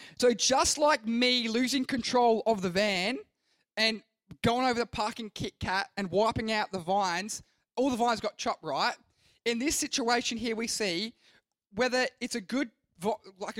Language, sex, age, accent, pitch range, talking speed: English, male, 20-39, Australian, 205-245 Hz, 170 wpm